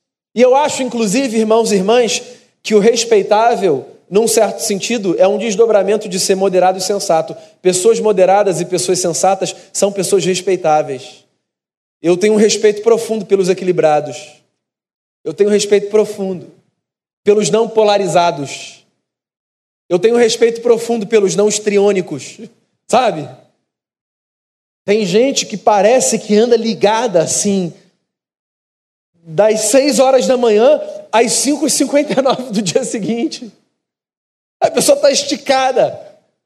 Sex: male